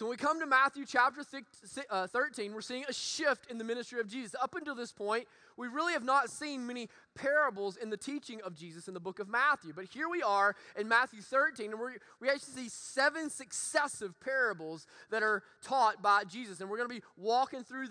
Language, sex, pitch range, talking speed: English, male, 210-270 Hz, 210 wpm